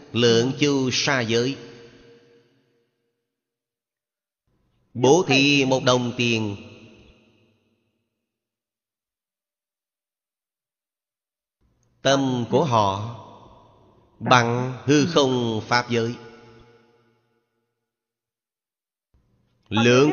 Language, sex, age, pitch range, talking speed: Vietnamese, male, 30-49, 110-125 Hz, 55 wpm